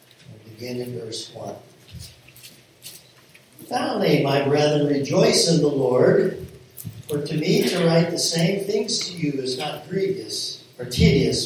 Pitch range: 135-180 Hz